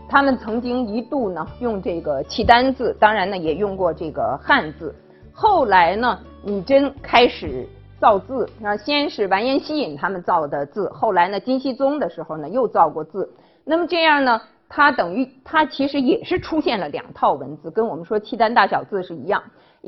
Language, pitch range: Chinese, 210-320 Hz